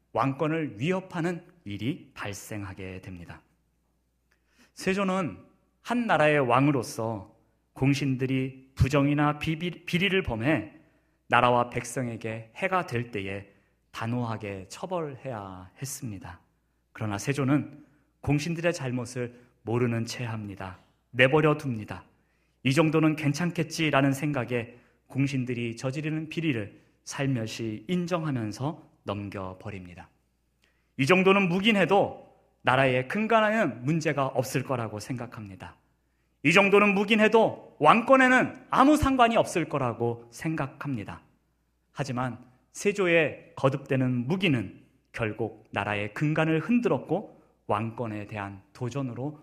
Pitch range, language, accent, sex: 110-160 Hz, Korean, native, male